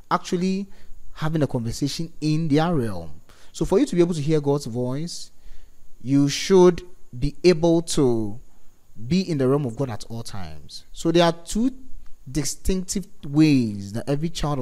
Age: 30-49